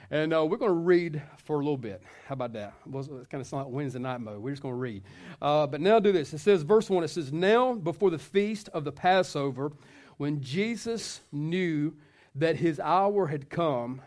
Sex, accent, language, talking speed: male, American, English, 220 wpm